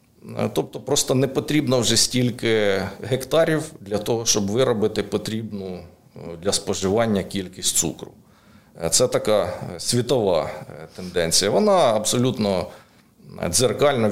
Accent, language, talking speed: native, Ukrainian, 100 wpm